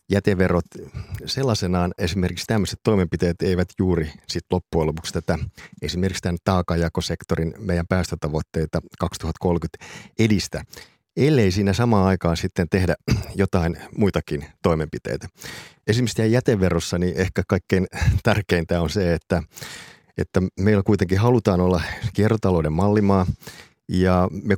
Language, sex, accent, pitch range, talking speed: Finnish, male, native, 90-105 Hz, 110 wpm